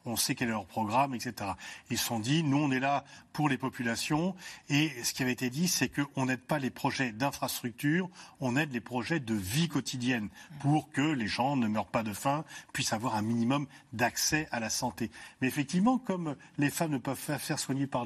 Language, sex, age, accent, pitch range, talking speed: French, male, 40-59, French, 120-150 Hz, 225 wpm